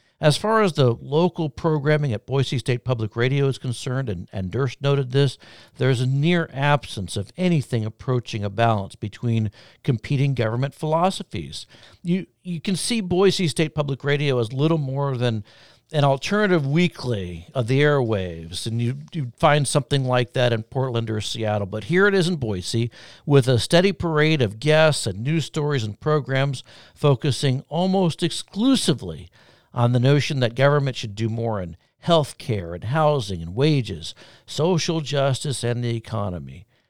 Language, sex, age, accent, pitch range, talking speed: English, male, 60-79, American, 115-155 Hz, 165 wpm